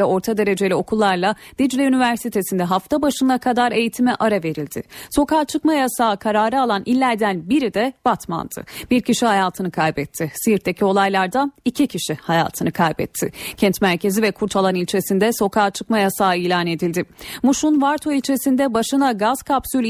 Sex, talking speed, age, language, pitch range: female, 140 wpm, 30-49, Turkish, 185-245 Hz